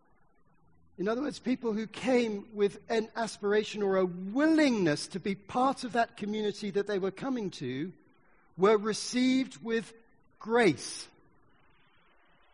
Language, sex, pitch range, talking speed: English, male, 135-200 Hz, 130 wpm